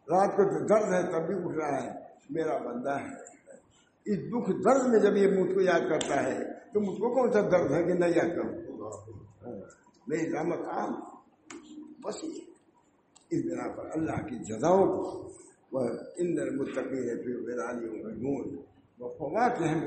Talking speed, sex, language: 165 wpm, male, English